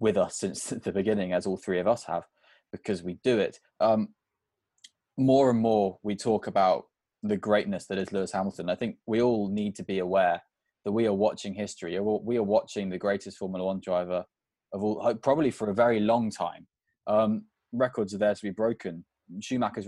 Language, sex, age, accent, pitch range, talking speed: English, male, 20-39, British, 95-115 Hz, 195 wpm